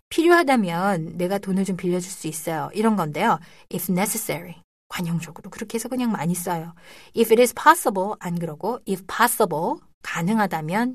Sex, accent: female, native